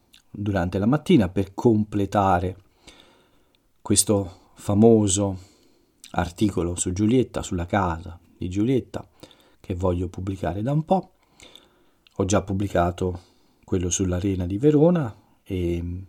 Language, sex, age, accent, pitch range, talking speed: Italian, male, 40-59, native, 90-110 Hz, 105 wpm